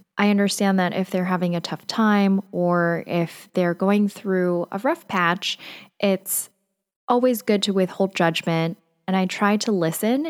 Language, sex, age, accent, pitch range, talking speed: English, female, 10-29, American, 170-215 Hz, 165 wpm